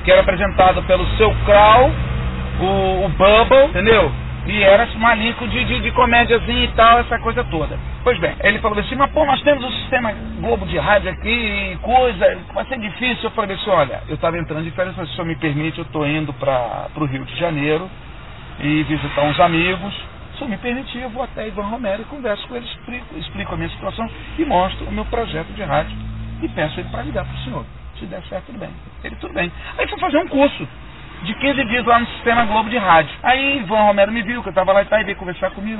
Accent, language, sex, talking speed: Brazilian, Portuguese, male, 230 wpm